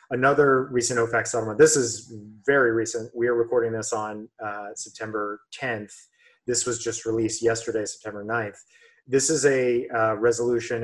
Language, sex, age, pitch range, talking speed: English, male, 30-49, 110-130 Hz, 155 wpm